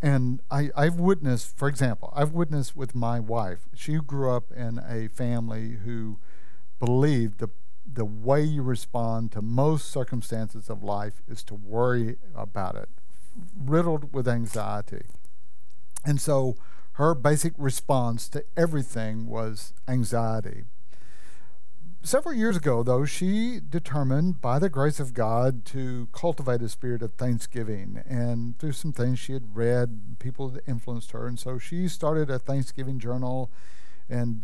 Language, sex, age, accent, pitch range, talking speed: English, male, 60-79, American, 115-145 Hz, 140 wpm